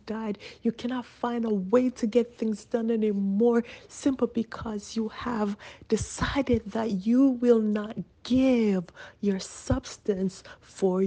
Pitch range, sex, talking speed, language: 190-240 Hz, female, 130 wpm, English